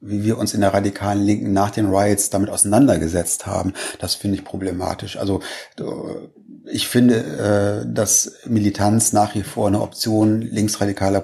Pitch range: 100-110 Hz